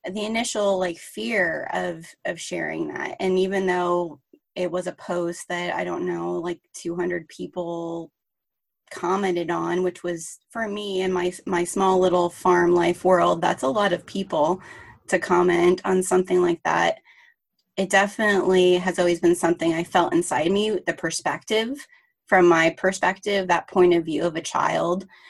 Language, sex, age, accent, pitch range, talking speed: English, female, 20-39, American, 170-205 Hz, 165 wpm